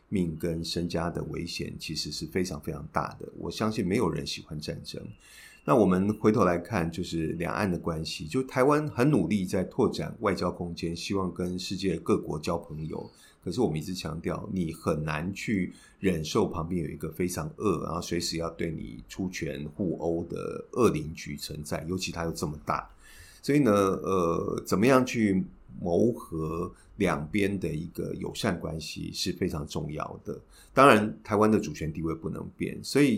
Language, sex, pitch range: Chinese, male, 85-105 Hz